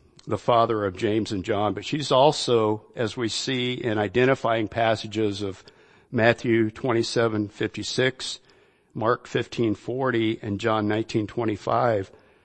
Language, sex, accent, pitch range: English, male, American, 110-125 Hz